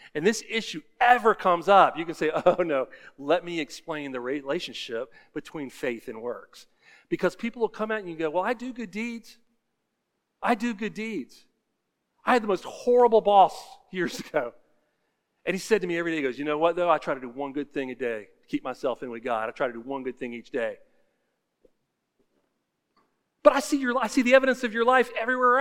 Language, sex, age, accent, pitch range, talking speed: English, male, 40-59, American, 170-250 Hz, 220 wpm